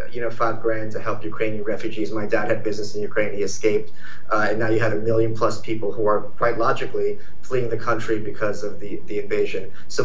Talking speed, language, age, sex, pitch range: 225 wpm, English, 30-49, male, 110-120 Hz